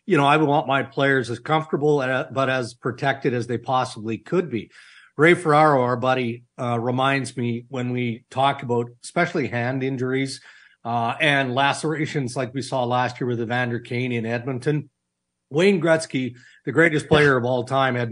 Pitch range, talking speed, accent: 120-145 Hz, 175 wpm, American